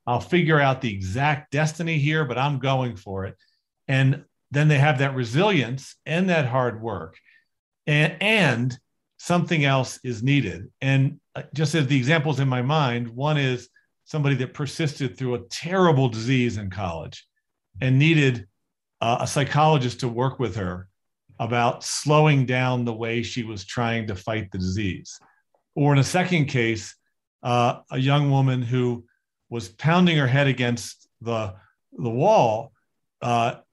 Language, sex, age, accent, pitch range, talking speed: English, male, 40-59, American, 115-150 Hz, 155 wpm